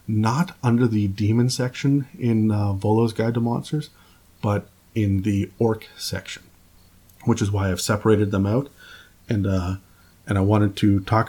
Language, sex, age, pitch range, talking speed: English, male, 30-49, 95-110 Hz, 160 wpm